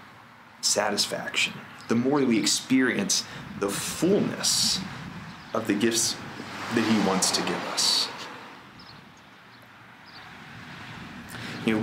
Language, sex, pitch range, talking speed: English, male, 110-150 Hz, 90 wpm